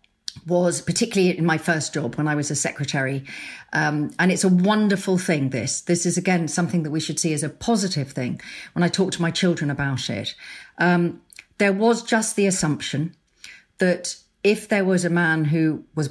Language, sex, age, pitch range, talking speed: English, female, 40-59, 140-175 Hz, 195 wpm